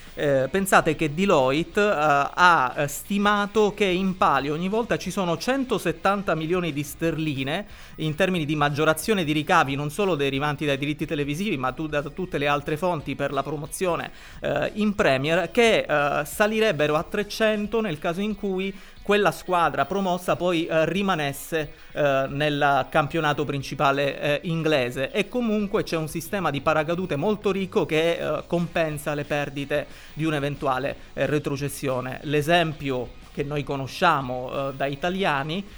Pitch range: 145-180 Hz